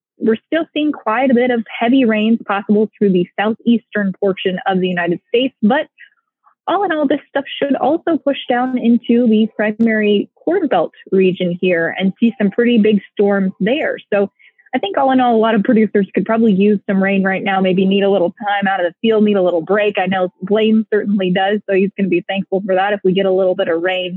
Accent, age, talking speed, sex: American, 20-39, 230 wpm, female